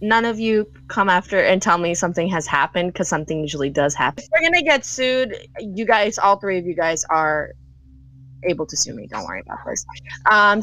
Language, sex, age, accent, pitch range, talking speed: English, female, 20-39, American, 155-190 Hz, 215 wpm